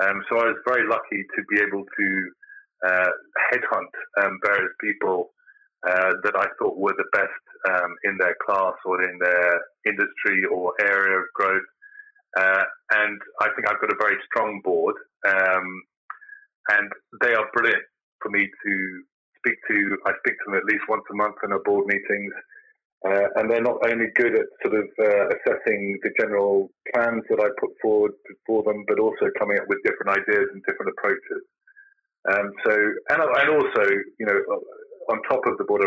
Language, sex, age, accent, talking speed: English, male, 30-49, British, 185 wpm